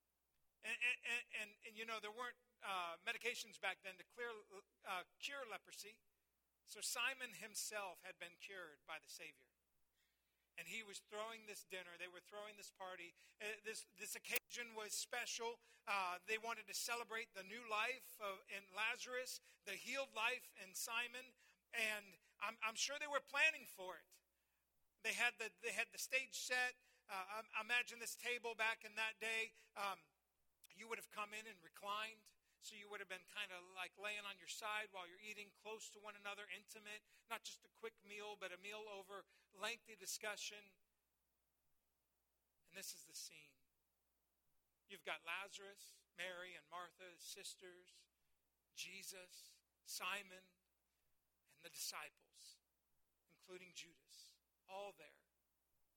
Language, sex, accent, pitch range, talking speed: English, male, American, 170-220 Hz, 155 wpm